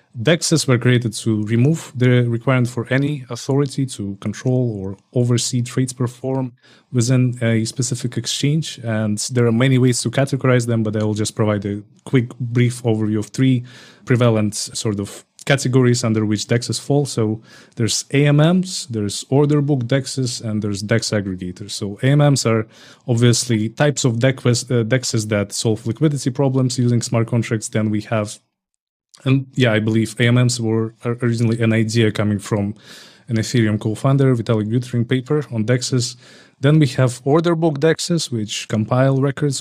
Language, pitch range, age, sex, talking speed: English, 110-135 Hz, 30-49, male, 160 wpm